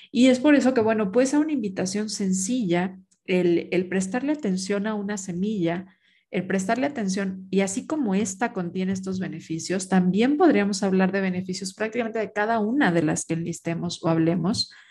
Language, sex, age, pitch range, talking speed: Spanish, female, 40-59, 180-215 Hz, 175 wpm